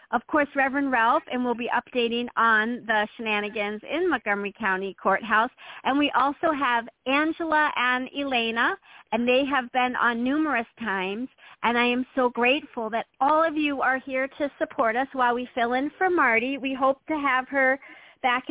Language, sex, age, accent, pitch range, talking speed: English, female, 40-59, American, 230-280 Hz, 180 wpm